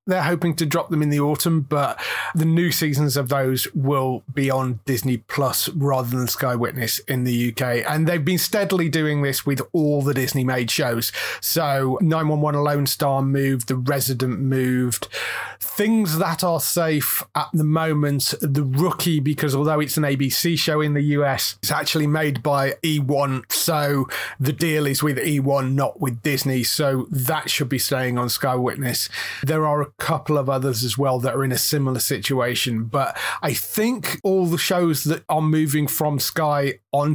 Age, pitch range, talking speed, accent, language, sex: 30-49, 125-155 Hz, 180 wpm, British, English, male